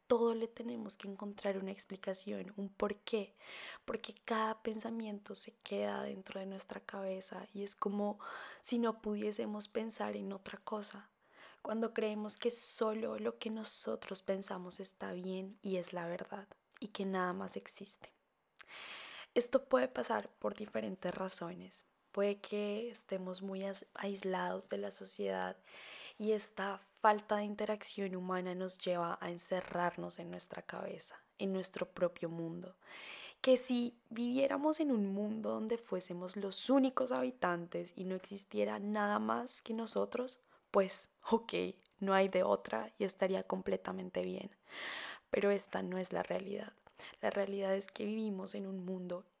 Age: 20-39